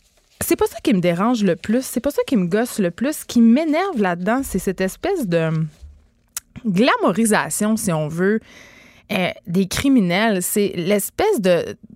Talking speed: 165 wpm